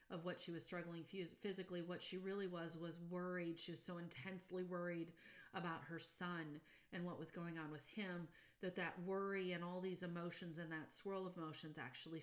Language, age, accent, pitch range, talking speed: English, 40-59, American, 160-185 Hz, 195 wpm